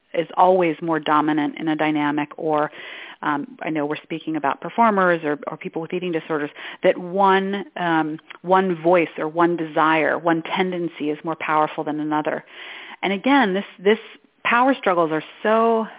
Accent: American